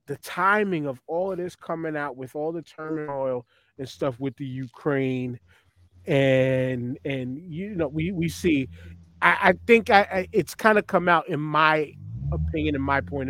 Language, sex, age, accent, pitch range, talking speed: English, male, 30-49, American, 130-190 Hz, 180 wpm